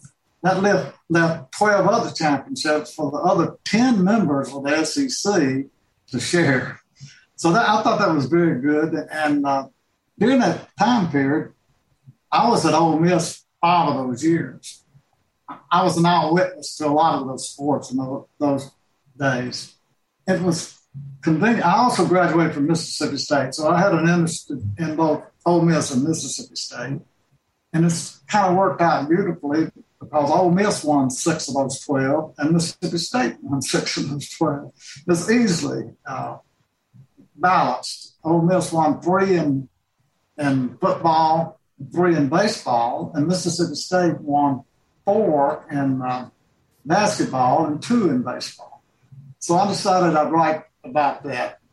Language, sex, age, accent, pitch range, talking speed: English, male, 60-79, American, 140-170 Hz, 150 wpm